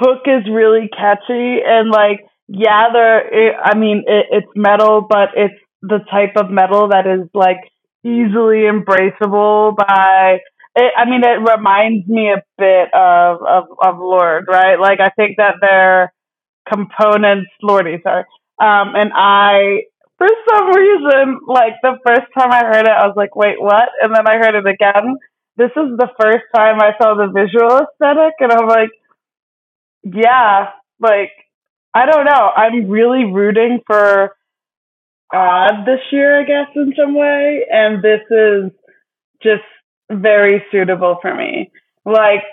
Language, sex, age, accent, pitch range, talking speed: English, female, 20-39, American, 195-235 Hz, 150 wpm